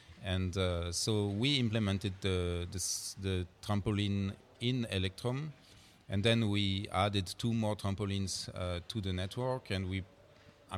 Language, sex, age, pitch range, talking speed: English, male, 40-59, 95-115 Hz, 140 wpm